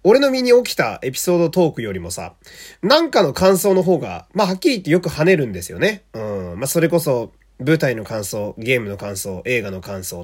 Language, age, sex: Japanese, 30-49, male